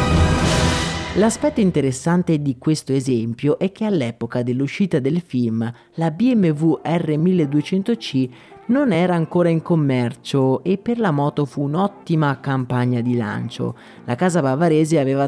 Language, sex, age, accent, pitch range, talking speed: Italian, male, 30-49, native, 125-165 Hz, 125 wpm